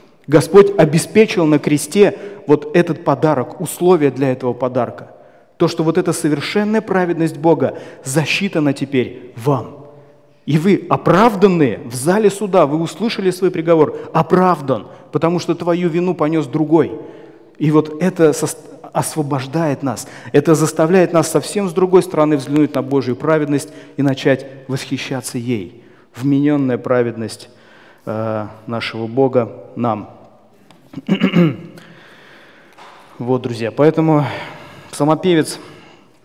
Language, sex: Russian, male